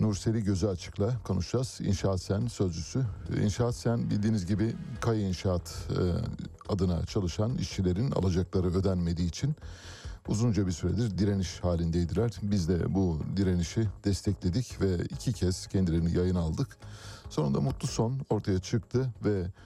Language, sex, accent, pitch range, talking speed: Turkish, male, native, 90-110 Hz, 125 wpm